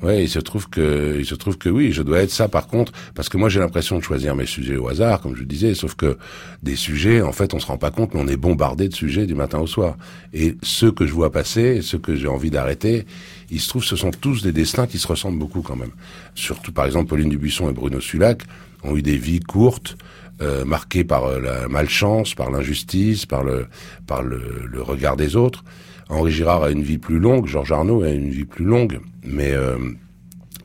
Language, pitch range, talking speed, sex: French, 70-95 Hz, 235 wpm, male